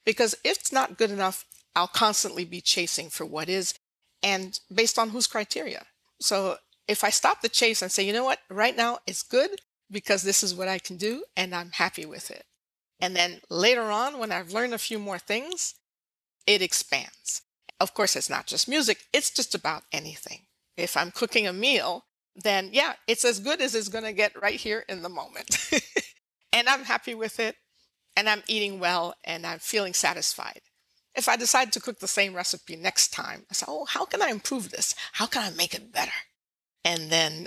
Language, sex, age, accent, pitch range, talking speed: English, female, 50-69, American, 180-235 Hz, 205 wpm